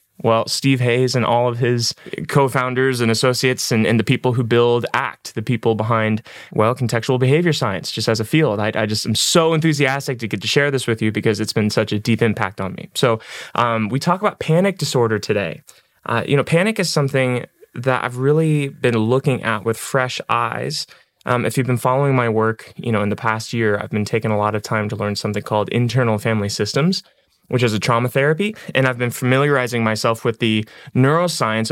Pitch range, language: 110-130 Hz, English